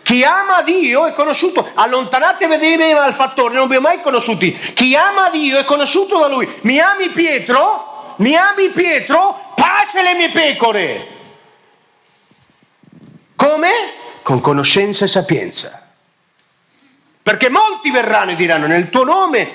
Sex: male